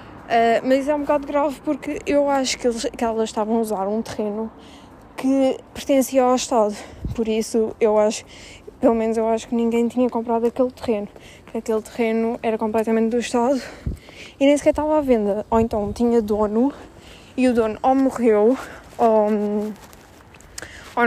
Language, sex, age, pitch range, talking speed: Arabic, female, 20-39, 220-260 Hz, 170 wpm